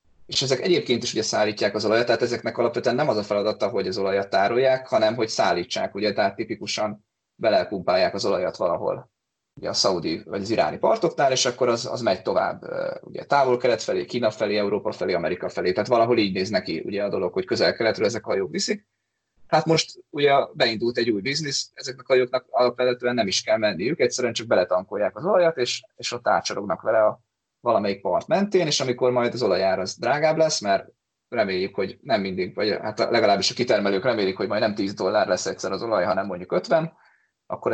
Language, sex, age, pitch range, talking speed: Hungarian, male, 20-39, 105-135 Hz, 200 wpm